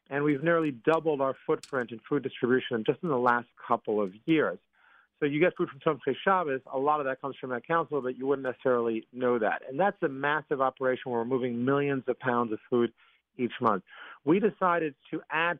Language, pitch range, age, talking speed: English, 125-155 Hz, 40-59, 220 wpm